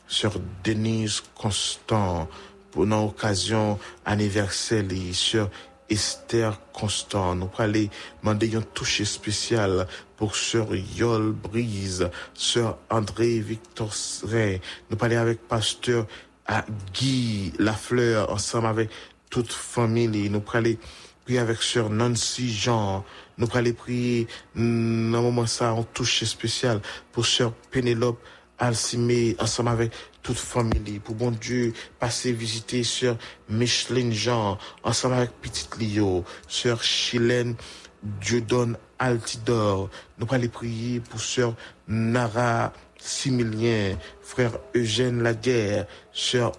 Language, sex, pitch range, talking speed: English, male, 105-120 Hz, 110 wpm